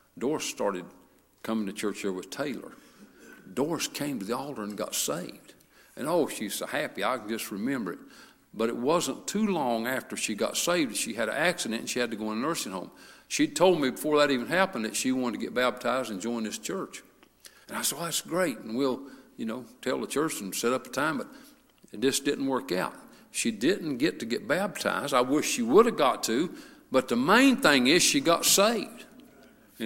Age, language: 60-79, English